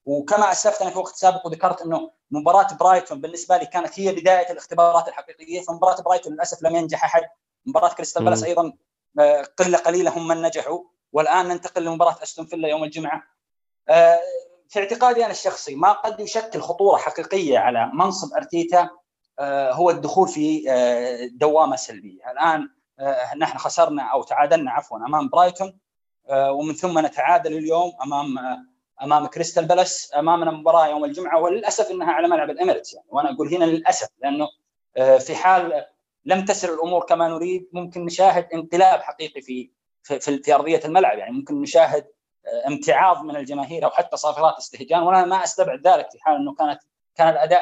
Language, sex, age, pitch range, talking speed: Arabic, male, 20-39, 155-190 Hz, 155 wpm